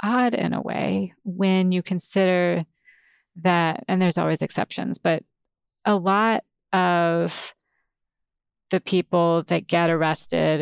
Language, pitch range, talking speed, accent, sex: English, 165-195 Hz, 120 wpm, American, female